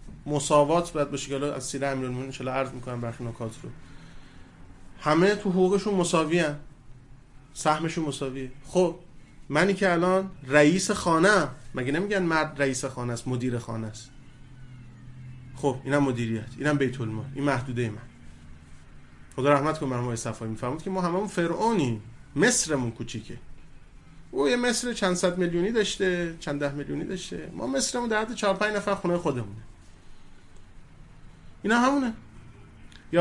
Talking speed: 140 wpm